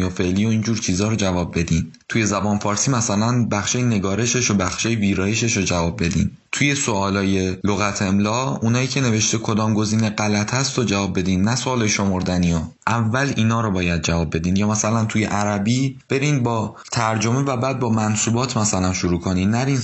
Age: 20-39